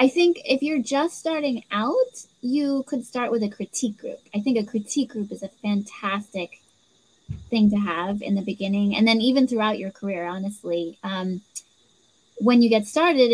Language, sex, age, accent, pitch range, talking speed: English, female, 20-39, American, 200-245 Hz, 180 wpm